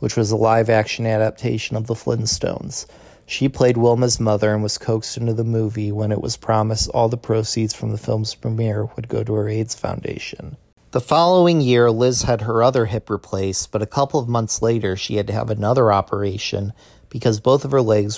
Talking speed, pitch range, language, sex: 200 wpm, 105-120 Hz, English, male